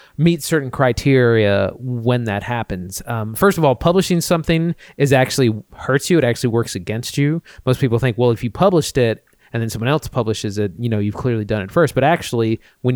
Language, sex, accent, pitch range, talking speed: English, male, American, 115-140 Hz, 210 wpm